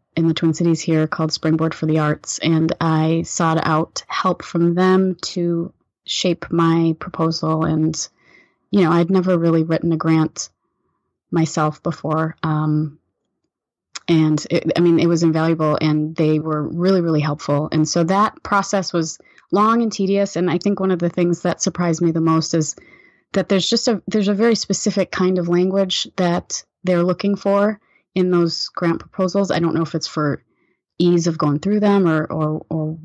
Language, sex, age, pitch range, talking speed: English, female, 30-49, 160-190 Hz, 180 wpm